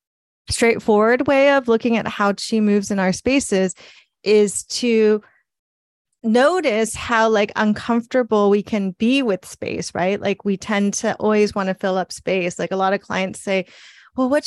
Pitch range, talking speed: 200-230 Hz, 170 wpm